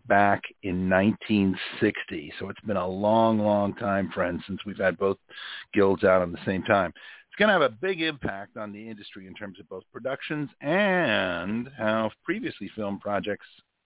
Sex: male